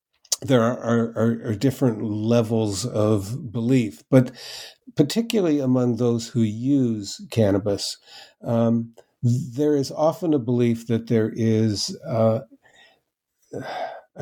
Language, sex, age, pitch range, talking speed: English, male, 50-69, 110-130 Hz, 105 wpm